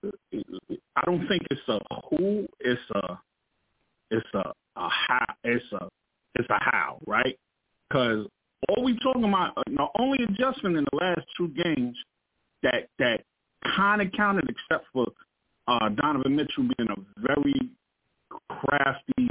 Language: English